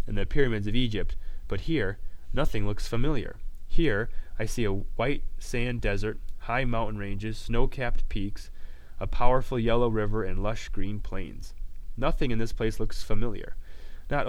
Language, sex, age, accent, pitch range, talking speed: English, male, 20-39, American, 90-120 Hz, 155 wpm